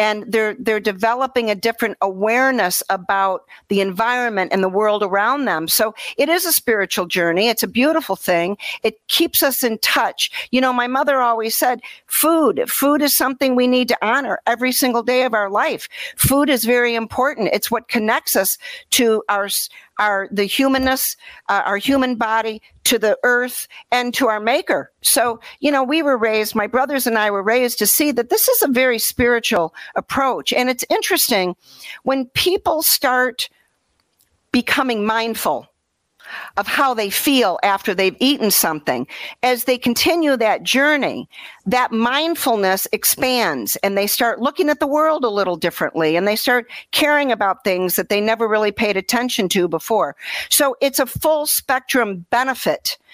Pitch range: 210-275 Hz